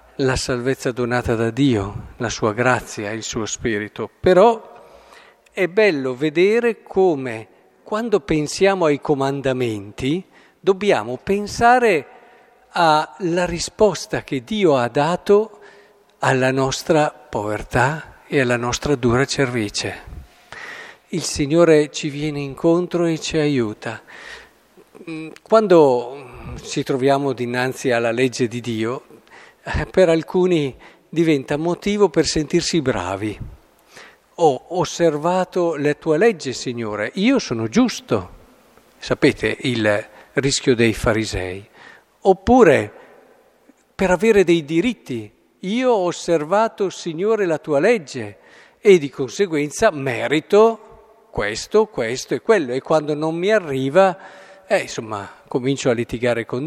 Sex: male